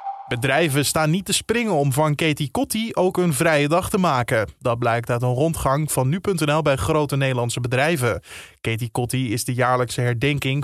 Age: 20-39